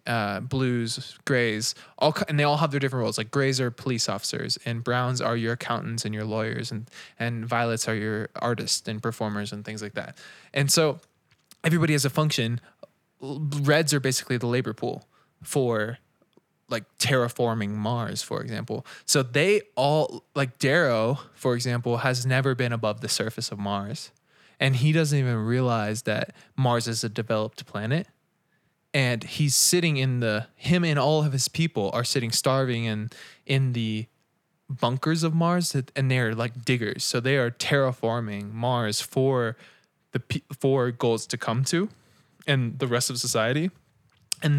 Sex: male